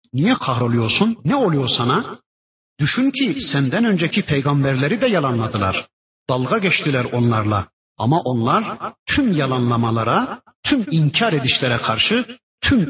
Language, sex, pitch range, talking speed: Turkish, male, 120-195 Hz, 110 wpm